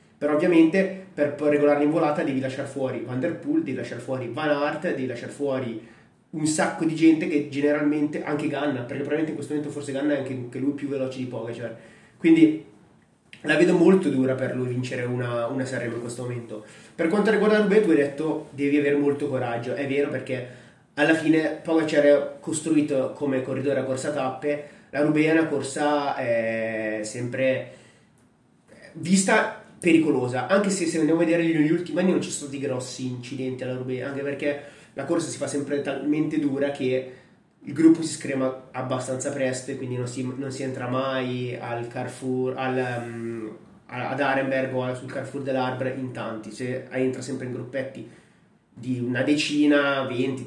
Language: Italian